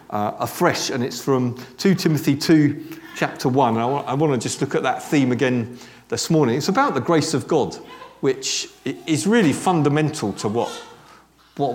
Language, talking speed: English, 185 wpm